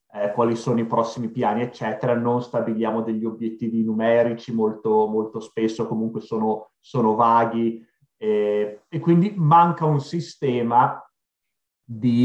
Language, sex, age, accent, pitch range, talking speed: Italian, male, 30-49, native, 115-145 Hz, 125 wpm